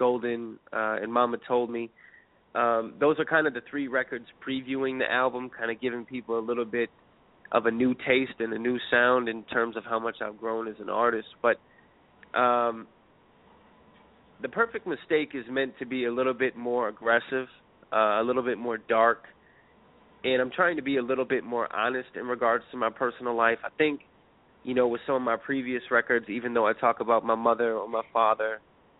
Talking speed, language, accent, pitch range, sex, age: 205 wpm, English, American, 115-130 Hz, male, 20-39